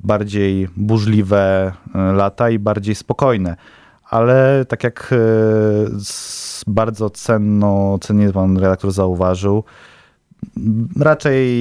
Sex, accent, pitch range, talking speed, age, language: male, native, 95-110 Hz, 80 wpm, 30-49, Polish